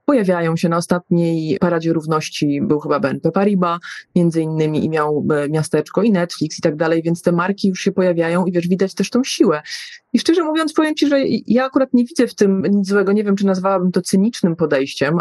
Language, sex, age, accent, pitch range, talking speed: Polish, female, 30-49, native, 165-200 Hz, 210 wpm